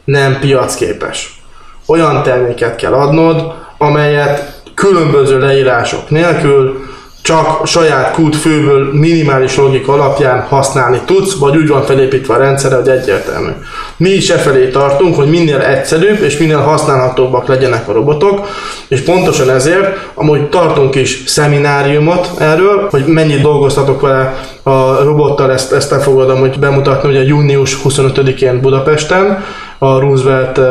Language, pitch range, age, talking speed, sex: Hungarian, 130-155 Hz, 20-39, 125 wpm, male